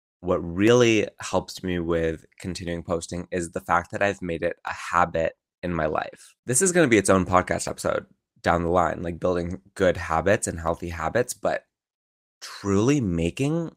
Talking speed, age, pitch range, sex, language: 180 wpm, 20-39, 85-100 Hz, male, English